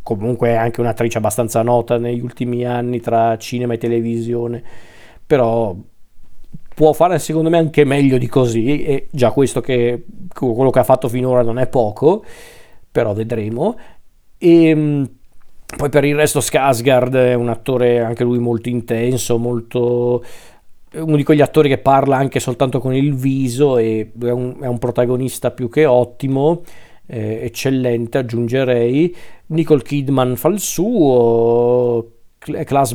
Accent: native